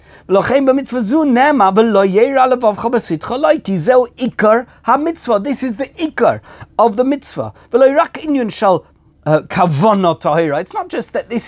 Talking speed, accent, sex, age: 65 wpm, British, male, 50-69